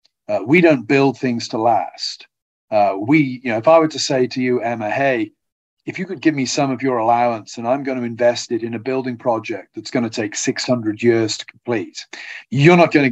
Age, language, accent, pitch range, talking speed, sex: 50-69, English, British, 120-155 Hz, 235 wpm, male